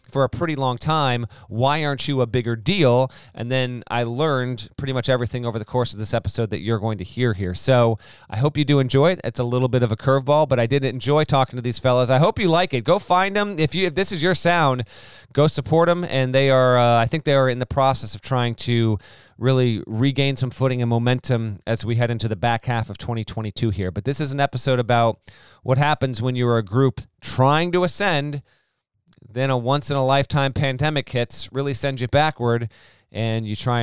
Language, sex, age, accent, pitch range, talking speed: English, male, 30-49, American, 110-135 Hz, 230 wpm